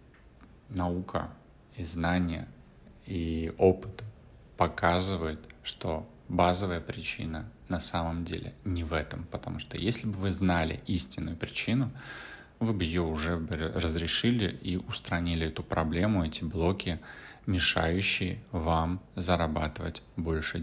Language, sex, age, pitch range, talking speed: Russian, male, 30-49, 80-100 Hz, 110 wpm